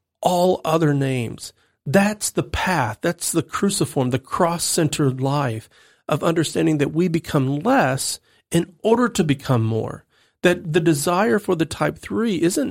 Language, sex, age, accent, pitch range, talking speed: English, male, 40-59, American, 130-185 Hz, 145 wpm